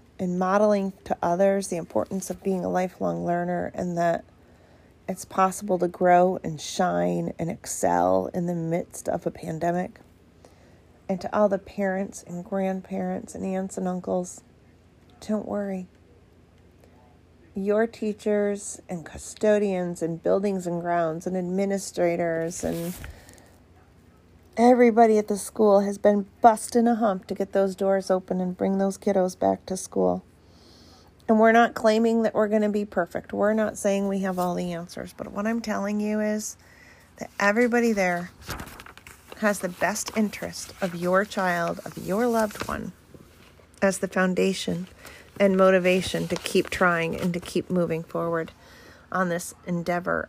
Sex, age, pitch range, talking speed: female, 40-59, 160-200 Hz, 150 wpm